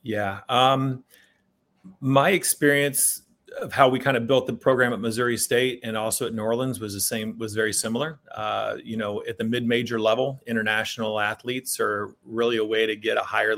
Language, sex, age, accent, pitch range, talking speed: English, male, 30-49, American, 110-120 Hz, 190 wpm